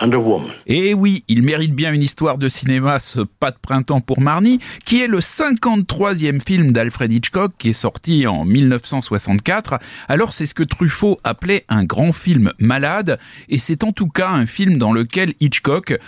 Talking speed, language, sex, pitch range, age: 180 wpm, French, male, 125-175 Hz, 40-59